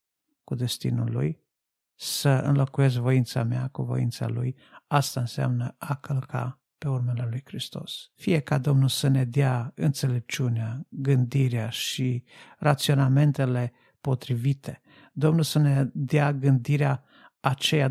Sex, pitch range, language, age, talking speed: male, 125-145 Hz, Romanian, 50-69, 115 wpm